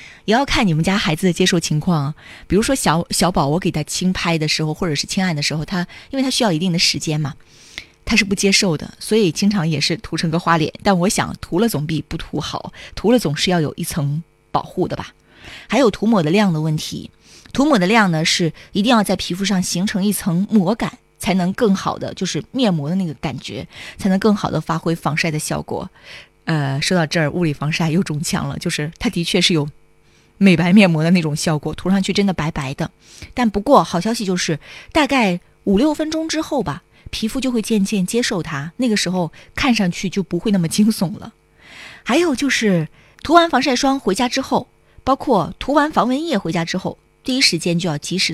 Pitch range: 165-215 Hz